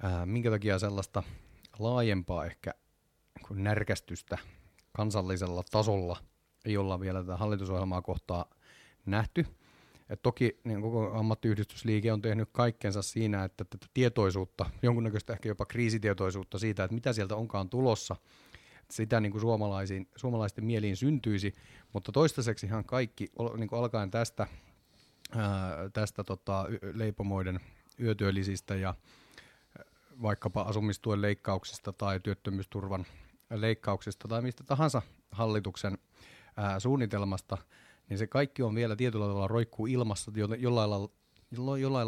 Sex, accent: male, native